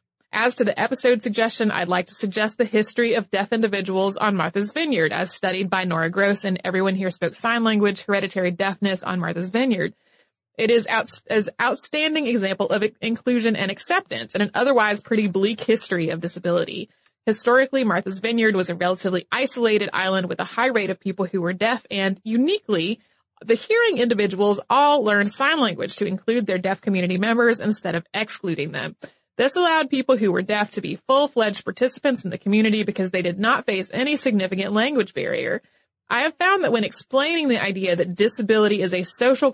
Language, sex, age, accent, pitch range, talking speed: English, female, 30-49, American, 190-240 Hz, 185 wpm